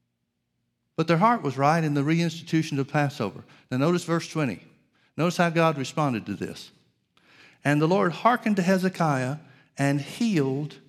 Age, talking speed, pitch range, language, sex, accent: 50-69, 155 wpm, 130-165 Hz, English, male, American